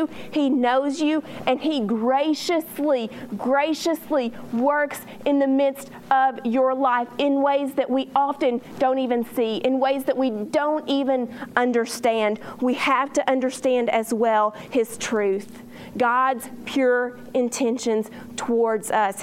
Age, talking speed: 40-59, 130 wpm